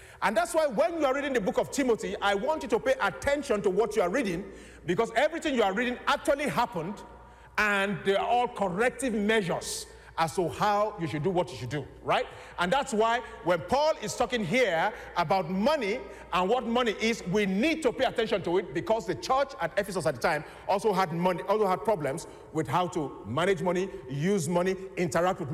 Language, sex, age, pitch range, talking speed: English, male, 50-69, 175-255 Hz, 210 wpm